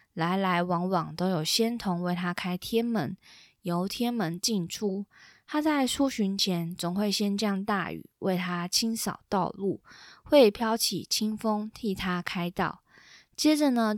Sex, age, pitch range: female, 20-39, 180-230 Hz